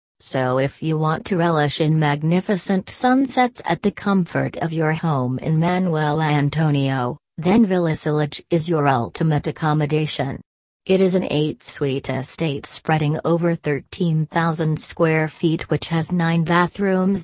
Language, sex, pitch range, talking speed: English, female, 150-175 Hz, 135 wpm